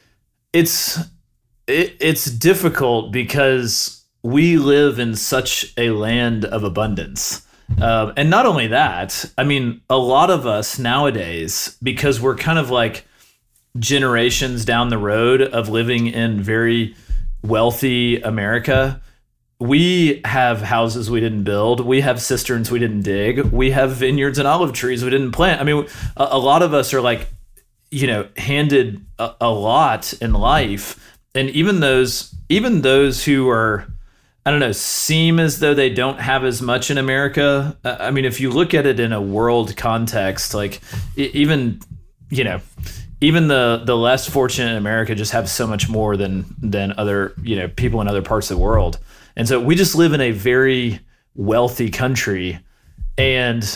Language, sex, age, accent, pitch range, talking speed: English, male, 30-49, American, 110-135 Hz, 165 wpm